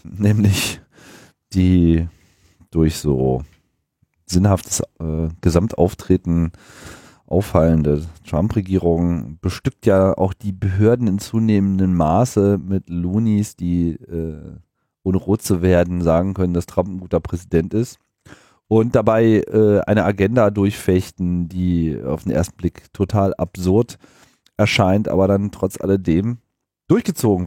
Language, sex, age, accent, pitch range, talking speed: German, male, 40-59, German, 90-105 Hz, 115 wpm